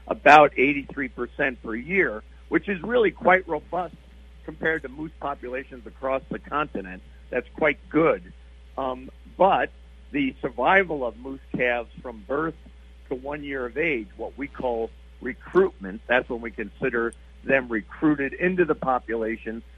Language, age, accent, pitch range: English, 50-69, American, 95-140 Hz